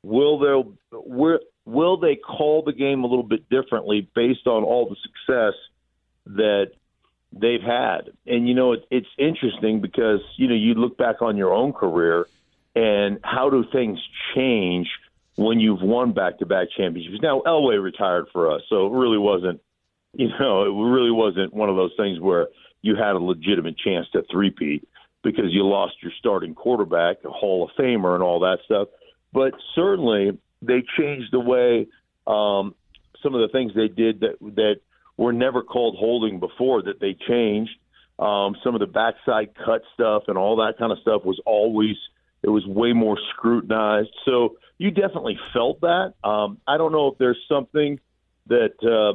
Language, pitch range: English, 105-130 Hz